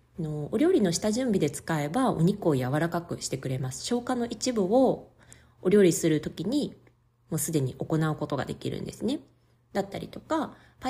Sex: female